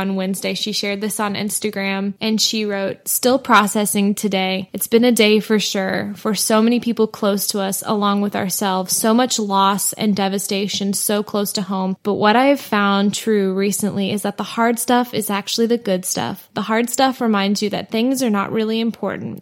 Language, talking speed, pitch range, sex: English, 200 wpm, 200-230 Hz, female